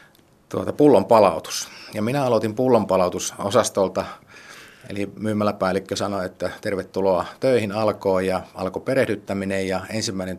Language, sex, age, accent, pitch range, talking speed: Finnish, male, 30-49, native, 95-110 Hz, 110 wpm